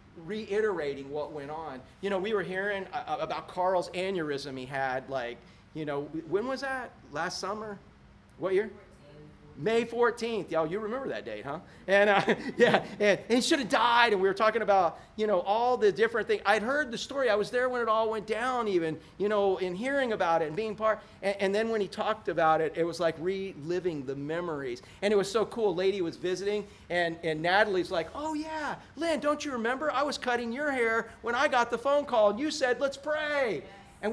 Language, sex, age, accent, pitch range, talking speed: English, male, 40-59, American, 180-255 Hz, 220 wpm